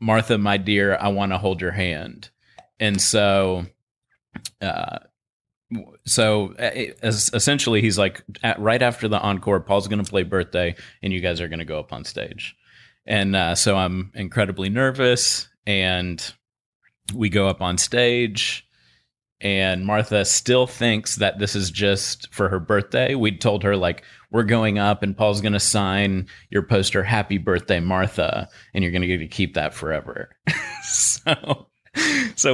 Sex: male